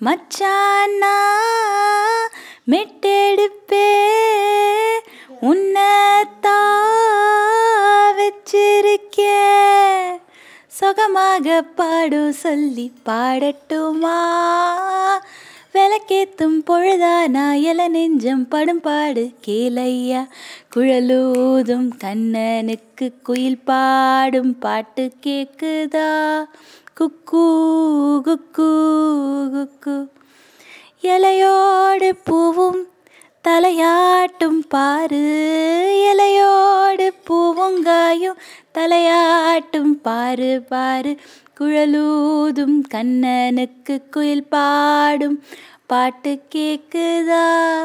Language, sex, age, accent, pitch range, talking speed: Tamil, female, 20-39, native, 285-380 Hz, 50 wpm